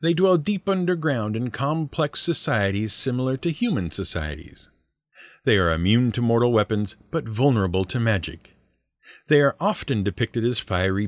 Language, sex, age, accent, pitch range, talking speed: English, male, 50-69, American, 100-160 Hz, 145 wpm